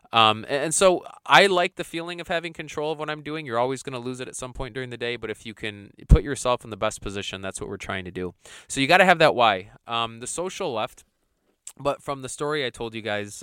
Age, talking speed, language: 20-39, 275 wpm, English